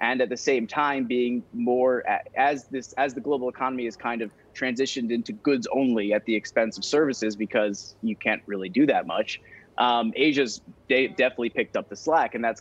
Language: English